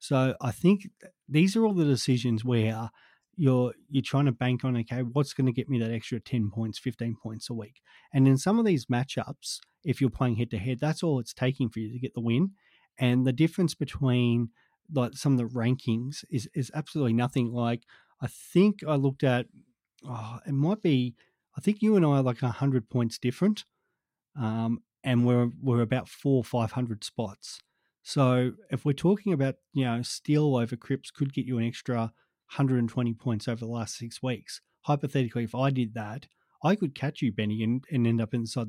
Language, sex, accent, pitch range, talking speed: English, male, Australian, 120-145 Hz, 205 wpm